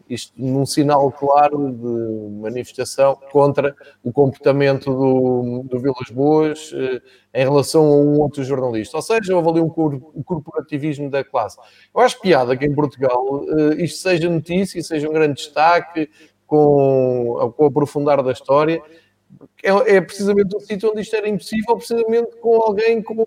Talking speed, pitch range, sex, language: 160 wpm, 140-190 Hz, male, Portuguese